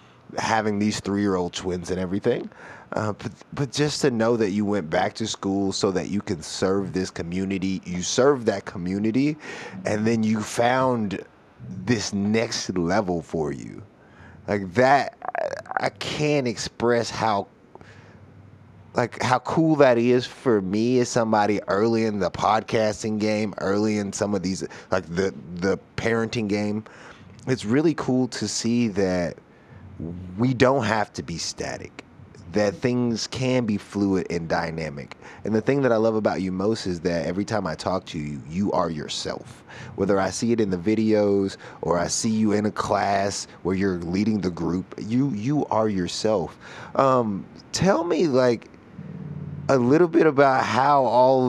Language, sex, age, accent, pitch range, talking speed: English, male, 30-49, American, 95-125 Hz, 165 wpm